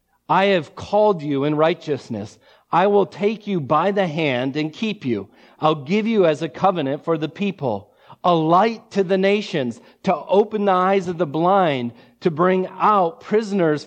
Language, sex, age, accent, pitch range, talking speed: English, male, 40-59, American, 145-190 Hz, 175 wpm